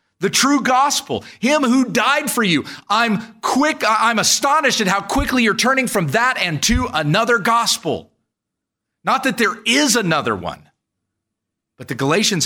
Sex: male